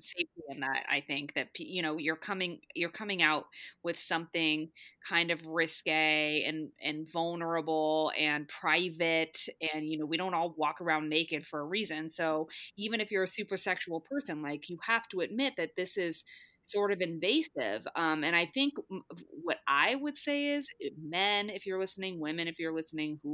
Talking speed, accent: 185 wpm, American